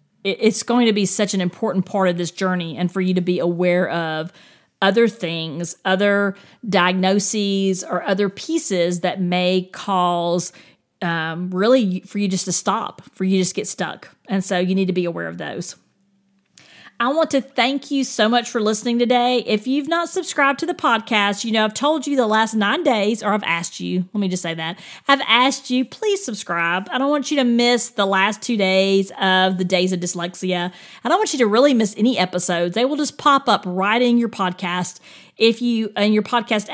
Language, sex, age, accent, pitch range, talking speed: English, female, 40-59, American, 190-245 Hz, 205 wpm